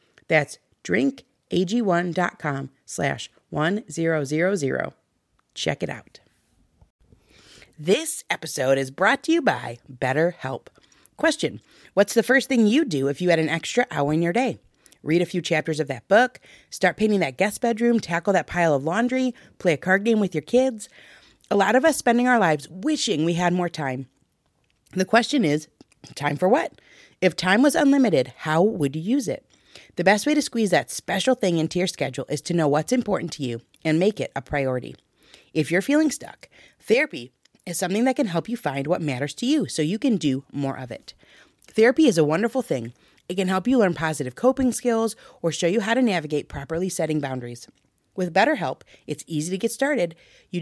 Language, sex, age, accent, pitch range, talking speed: English, female, 30-49, American, 150-230 Hz, 185 wpm